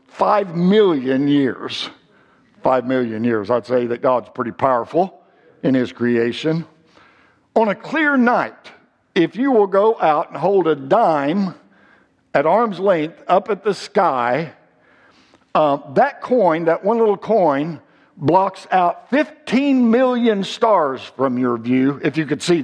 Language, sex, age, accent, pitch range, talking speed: English, male, 60-79, American, 150-215 Hz, 145 wpm